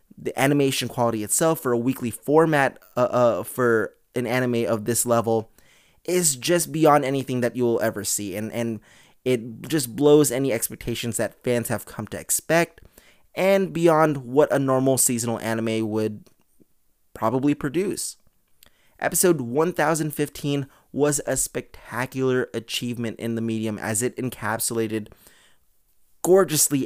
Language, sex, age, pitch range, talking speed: English, male, 20-39, 115-150 Hz, 135 wpm